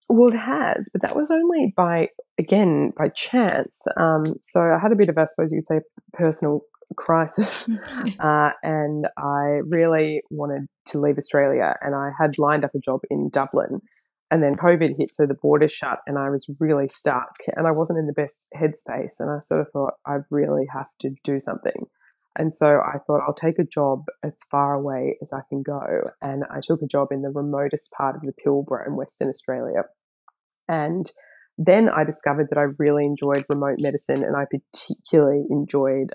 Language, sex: English, female